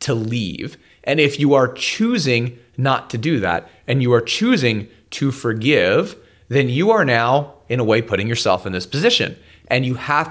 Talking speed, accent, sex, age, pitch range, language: 185 wpm, American, male, 30-49, 110-145 Hz, English